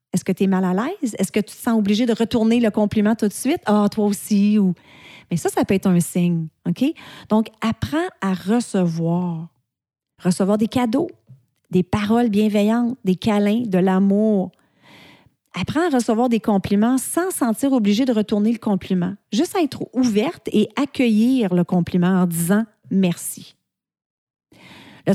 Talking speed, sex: 160 wpm, female